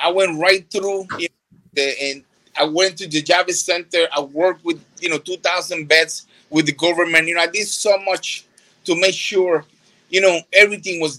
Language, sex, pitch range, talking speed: English, male, 155-190 Hz, 205 wpm